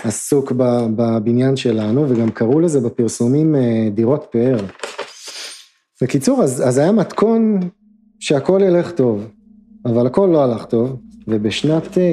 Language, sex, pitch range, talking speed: Hebrew, male, 110-165 Hz, 115 wpm